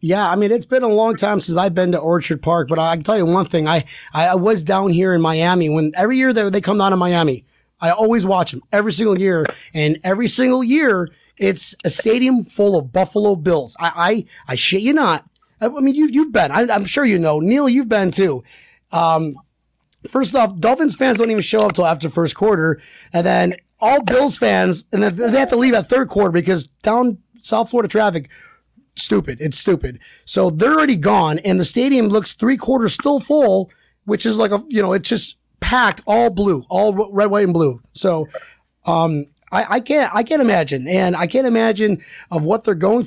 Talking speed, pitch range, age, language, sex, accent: 215 wpm, 170-230 Hz, 30-49, English, male, American